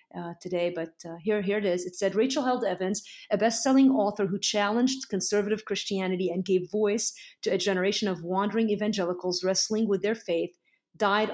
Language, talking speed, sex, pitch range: English, 180 wpm, female, 180-210 Hz